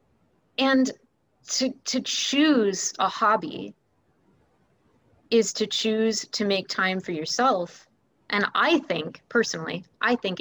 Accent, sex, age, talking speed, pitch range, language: American, female, 20-39, 115 wpm, 185-230 Hz, English